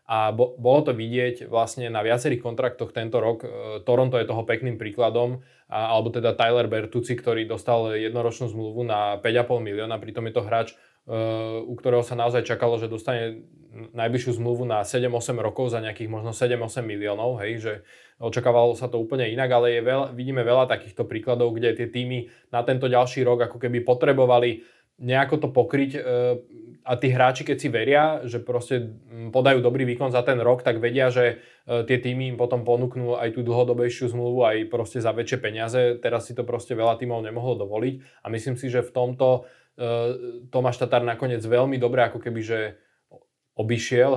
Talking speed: 175 wpm